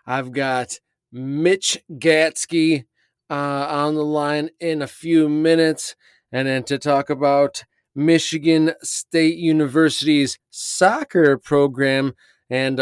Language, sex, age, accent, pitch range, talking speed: English, male, 30-49, American, 145-165 Hz, 110 wpm